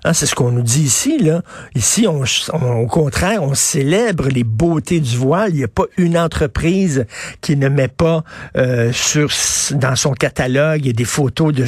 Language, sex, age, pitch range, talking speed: French, male, 60-79, 125-160 Hz, 205 wpm